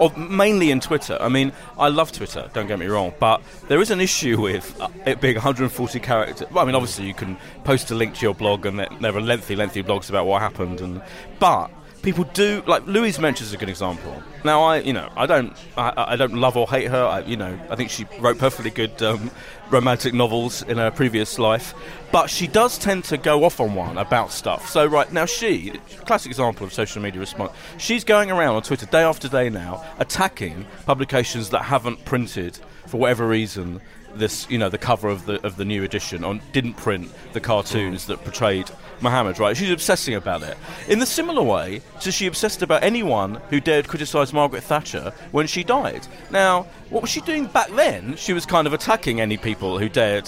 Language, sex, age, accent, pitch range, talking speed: English, male, 30-49, British, 110-170 Hz, 210 wpm